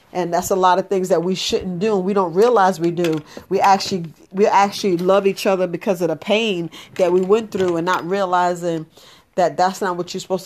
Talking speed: 225 wpm